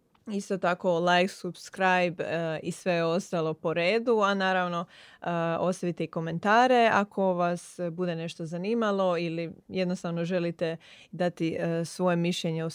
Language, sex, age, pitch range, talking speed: Croatian, female, 20-39, 170-205 Hz, 135 wpm